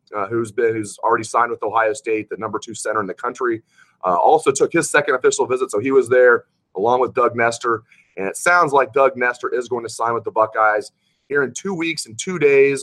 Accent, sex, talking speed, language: American, male, 240 wpm, English